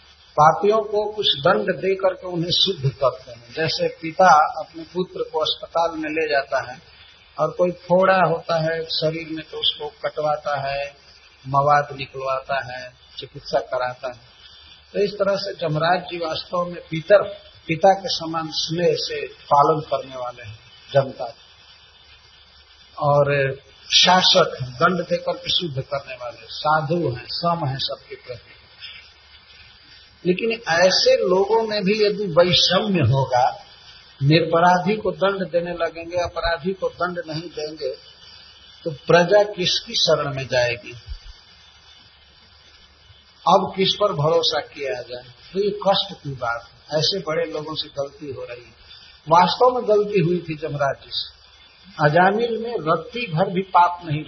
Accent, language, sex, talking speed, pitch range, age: native, Hindi, male, 140 wpm, 125-180 Hz, 60-79